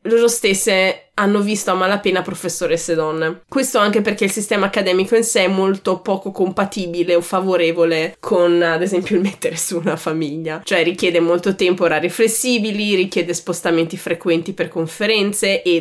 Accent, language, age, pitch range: native, Italian, 20-39, 175-210 Hz